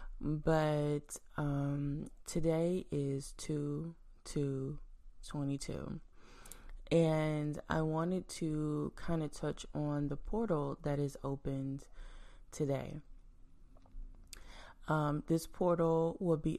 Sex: female